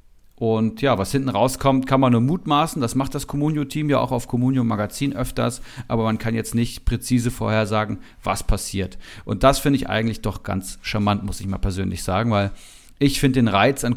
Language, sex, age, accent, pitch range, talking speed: German, male, 40-59, German, 110-130 Hz, 200 wpm